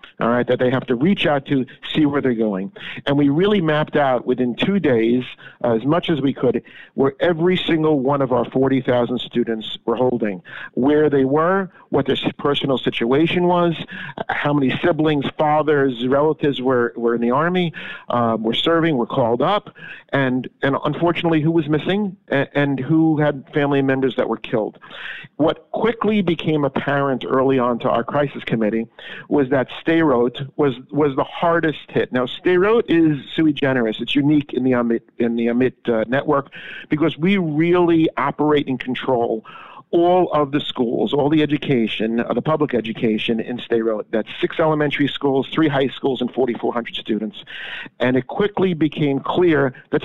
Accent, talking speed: American, 175 wpm